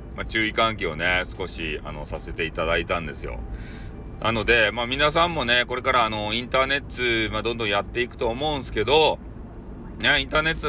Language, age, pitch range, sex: Japanese, 40-59, 105-130 Hz, male